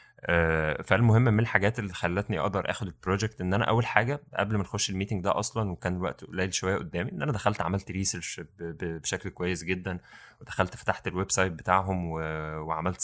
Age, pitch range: 20-39, 85-105 Hz